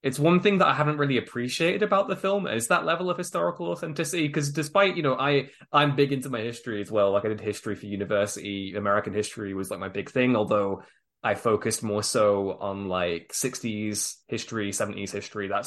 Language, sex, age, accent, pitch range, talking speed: English, male, 20-39, British, 105-135 Hz, 205 wpm